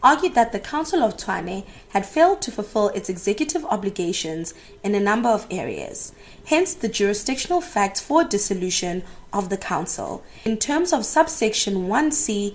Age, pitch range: 20-39, 195-255 Hz